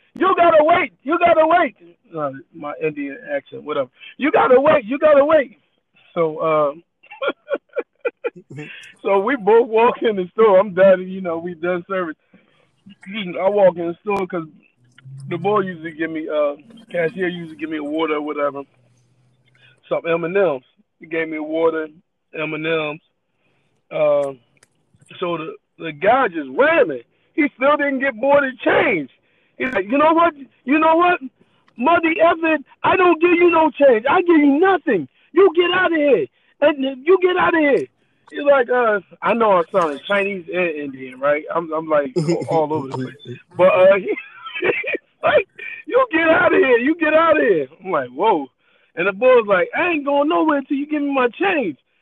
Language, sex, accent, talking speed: English, male, American, 185 wpm